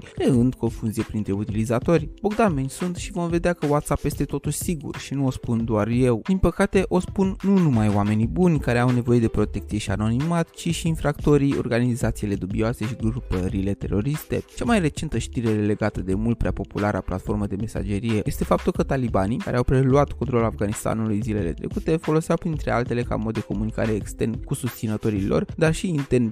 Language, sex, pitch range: Romanian, male, 105-150 Hz